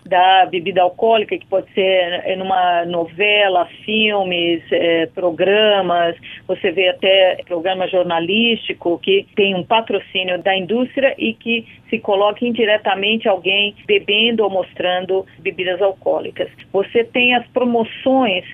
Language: Portuguese